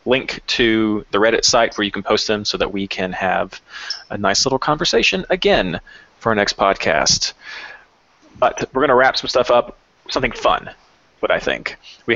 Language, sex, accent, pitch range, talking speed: English, male, American, 100-125 Hz, 190 wpm